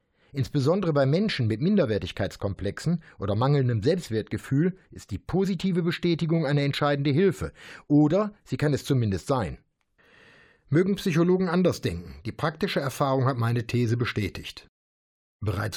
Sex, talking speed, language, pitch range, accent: male, 125 wpm, German, 115-165 Hz, German